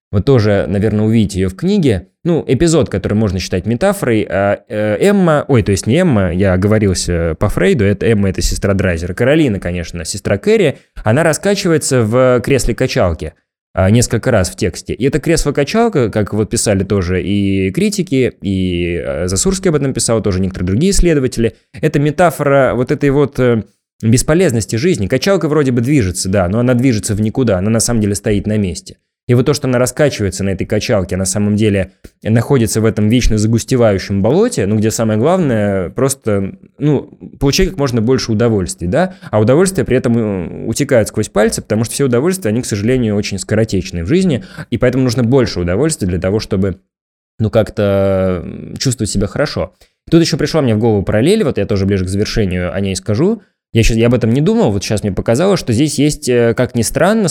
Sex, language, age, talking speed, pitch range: male, Russian, 20-39, 185 wpm, 100-135 Hz